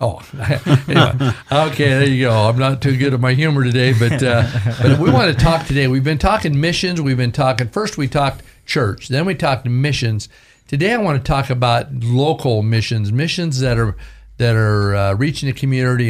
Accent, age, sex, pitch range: American, 50-69, male, 110-135 Hz